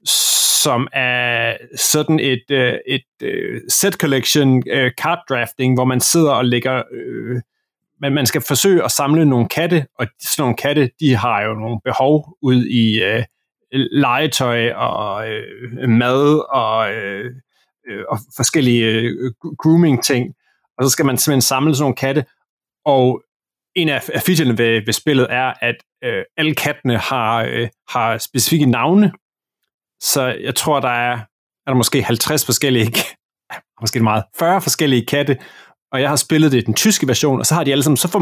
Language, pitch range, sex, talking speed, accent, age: Danish, 125-155 Hz, male, 145 wpm, native, 30-49